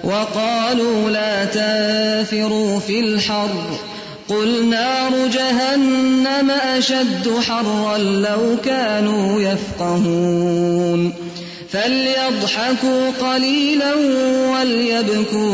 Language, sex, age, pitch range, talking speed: English, female, 30-49, 195-230 Hz, 60 wpm